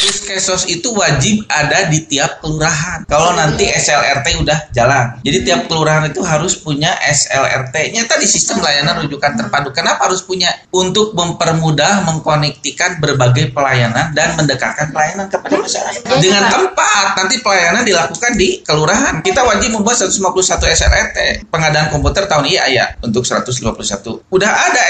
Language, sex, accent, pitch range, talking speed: Indonesian, male, native, 155-195 Hz, 140 wpm